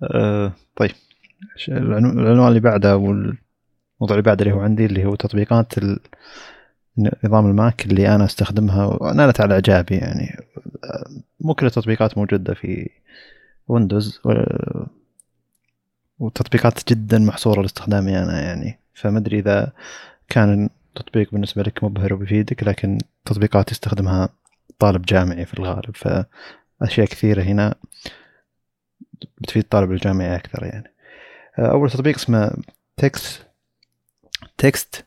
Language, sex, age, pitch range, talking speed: Arabic, male, 20-39, 100-110 Hz, 110 wpm